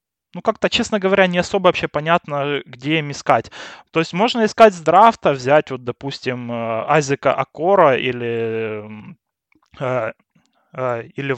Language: Russian